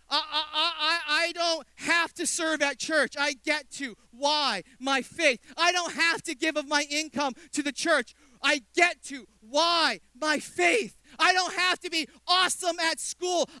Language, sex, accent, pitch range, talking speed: English, male, American, 195-325 Hz, 175 wpm